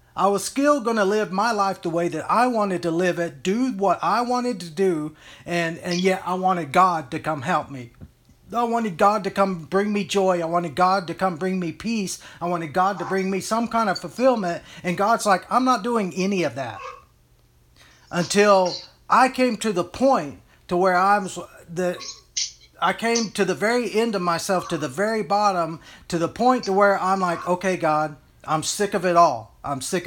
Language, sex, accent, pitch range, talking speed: English, male, American, 165-205 Hz, 210 wpm